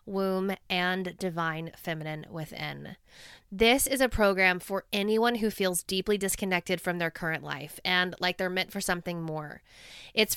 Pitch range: 175-220 Hz